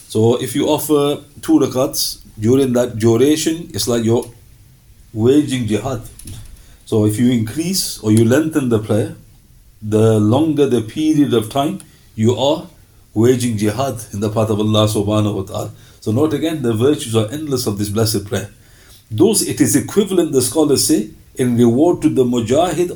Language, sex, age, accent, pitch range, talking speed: English, male, 50-69, Indian, 110-145 Hz, 165 wpm